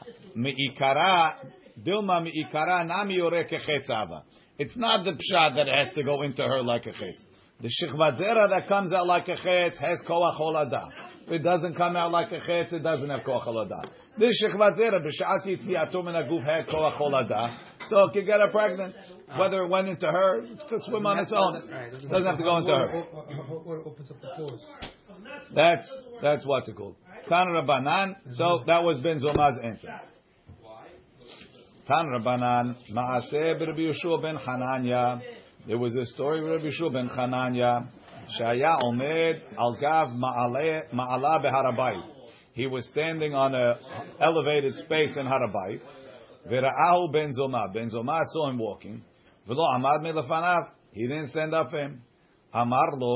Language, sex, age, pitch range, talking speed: English, male, 50-69, 125-170 Hz, 135 wpm